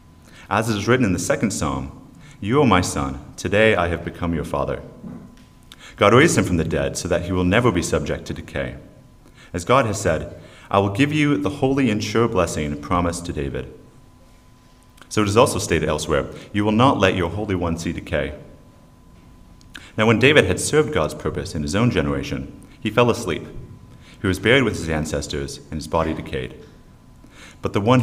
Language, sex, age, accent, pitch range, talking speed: English, male, 30-49, American, 75-110 Hz, 195 wpm